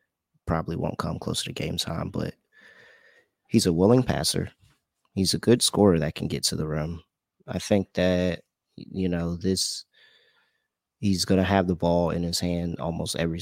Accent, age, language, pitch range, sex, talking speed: American, 30-49, English, 85-100 Hz, male, 175 wpm